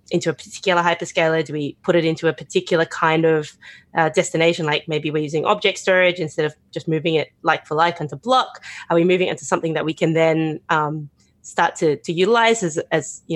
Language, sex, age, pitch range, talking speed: English, female, 20-39, 160-200 Hz, 220 wpm